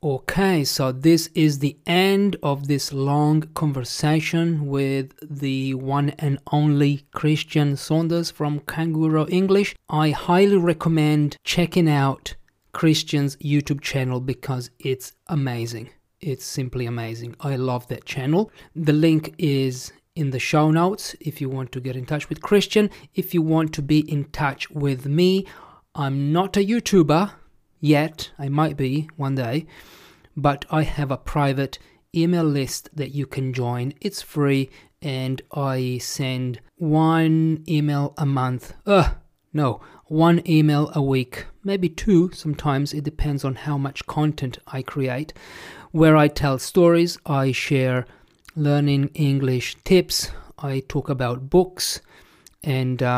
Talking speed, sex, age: 140 wpm, male, 30-49